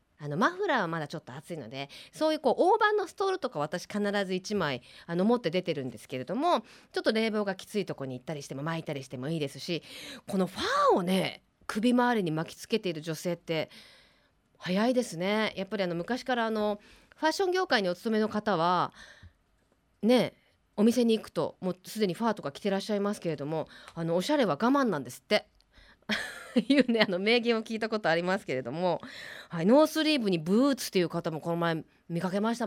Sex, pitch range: female, 175-265 Hz